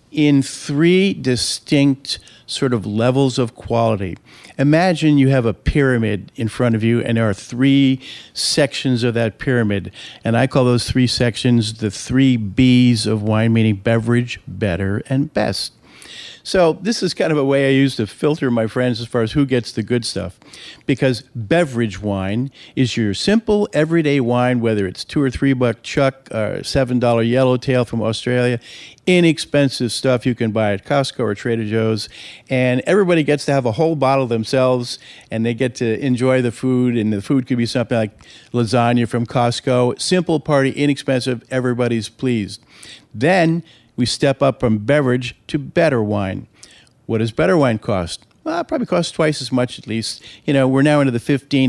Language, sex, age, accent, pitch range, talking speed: English, male, 50-69, American, 115-135 Hz, 180 wpm